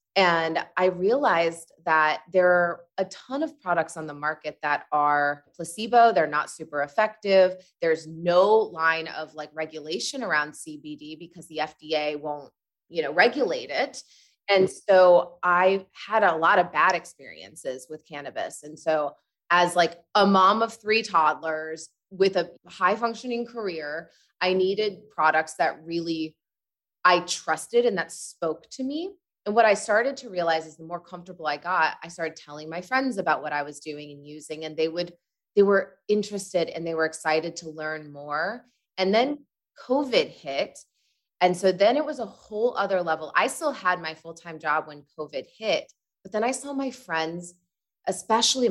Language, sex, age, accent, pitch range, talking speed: English, female, 20-39, American, 155-200 Hz, 170 wpm